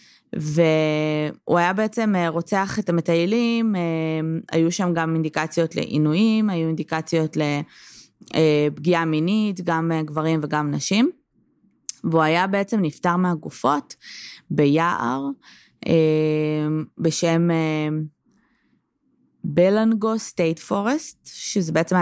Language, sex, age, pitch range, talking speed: Hebrew, female, 20-39, 155-185 Hz, 85 wpm